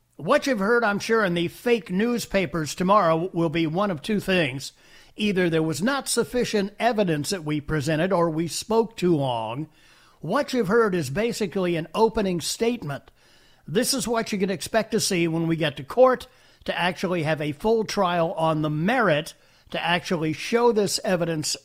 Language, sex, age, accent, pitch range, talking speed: English, male, 50-69, American, 155-210 Hz, 180 wpm